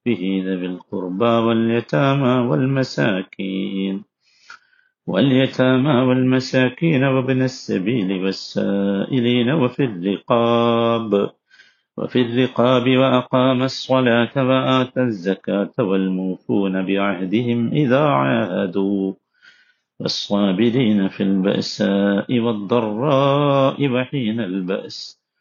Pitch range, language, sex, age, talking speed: 100-130 Hz, Malayalam, male, 50-69, 65 wpm